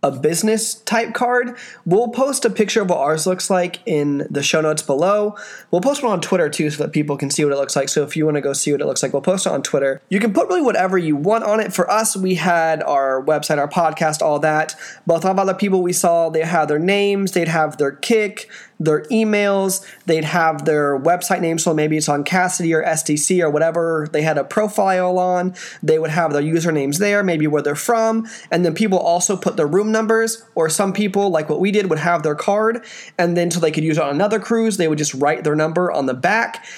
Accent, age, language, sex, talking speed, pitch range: American, 20-39, English, male, 250 wpm, 160-210 Hz